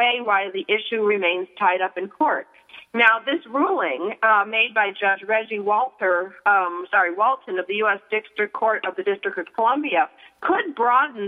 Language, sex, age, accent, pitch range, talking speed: English, female, 50-69, American, 195-255 Hz, 170 wpm